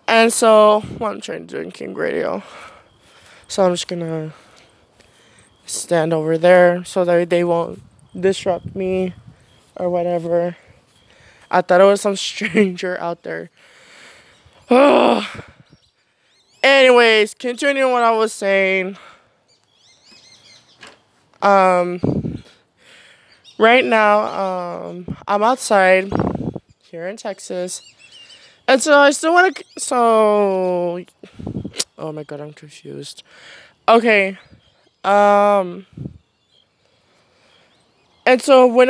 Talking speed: 105 wpm